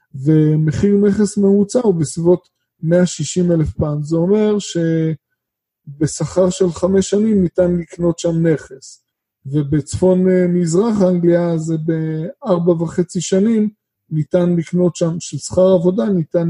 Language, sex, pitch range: Hebrew, male, 155-185 Hz